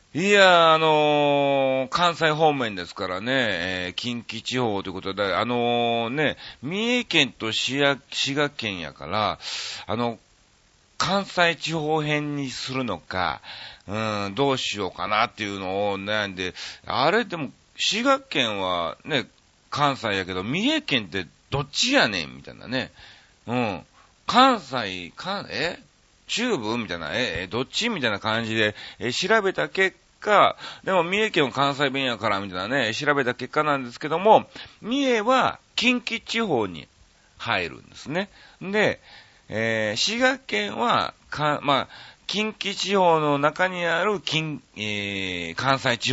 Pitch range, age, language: 105-170 Hz, 40-59, Japanese